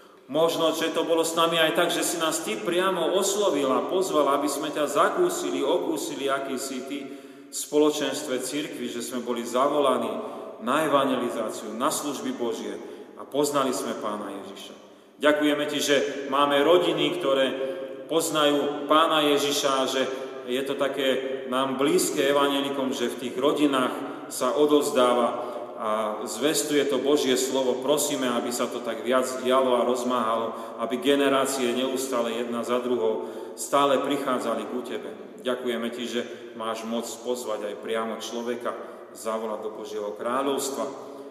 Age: 30-49